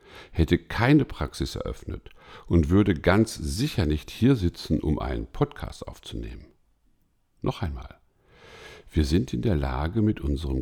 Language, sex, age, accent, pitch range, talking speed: German, male, 60-79, German, 75-115 Hz, 135 wpm